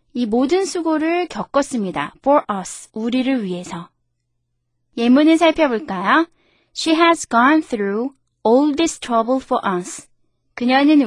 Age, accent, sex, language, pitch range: 20-39, native, female, Korean, 210-310 Hz